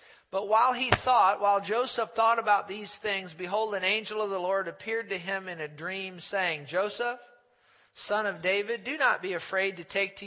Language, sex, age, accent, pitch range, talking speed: English, male, 40-59, American, 175-220 Hz, 200 wpm